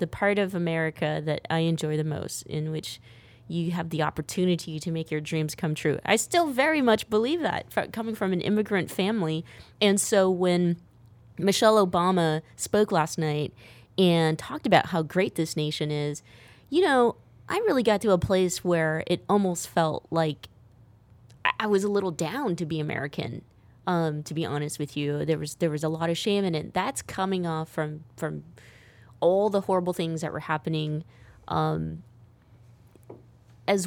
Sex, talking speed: female, 175 wpm